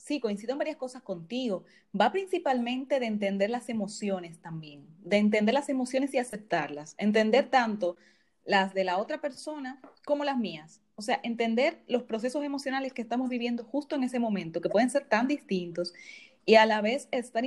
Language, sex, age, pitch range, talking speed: Spanish, female, 30-49, 185-255 Hz, 180 wpm